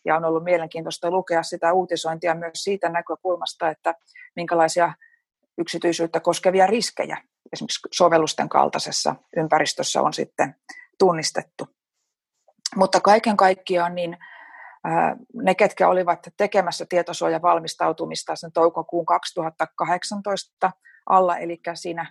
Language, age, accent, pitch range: Finnish, 30-49, native, 165-200 Hz